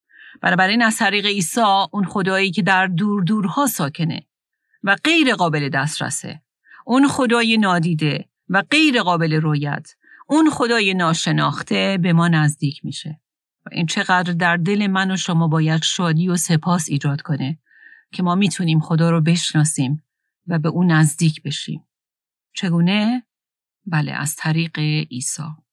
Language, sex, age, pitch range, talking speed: Persian, female, 40-59, 165-215 Hz, 140 wpm